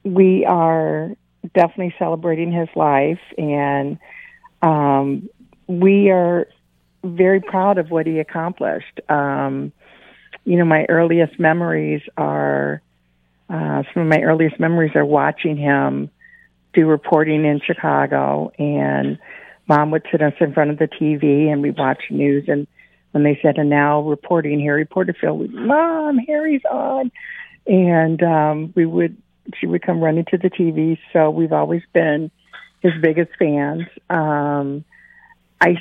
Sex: female